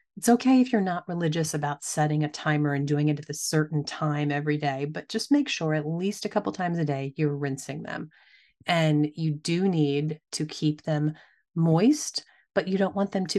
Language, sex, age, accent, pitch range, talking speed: English, female, 30-49, American, 150-170 Hz, 210 wpm